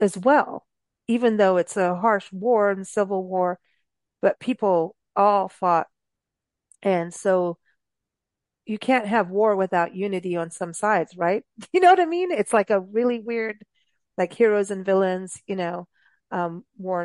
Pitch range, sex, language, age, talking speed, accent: 185-250 Hz, female, English, 40-59, 160 wpm, American